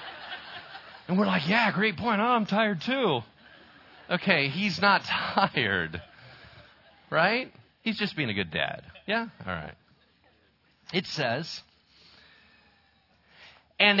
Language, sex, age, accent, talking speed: English, male, 40-59, American, 115 wpm